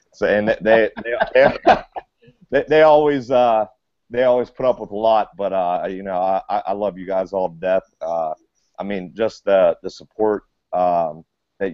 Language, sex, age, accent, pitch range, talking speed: English, male, 30-49, American, 85-105 Hz, 185 wpm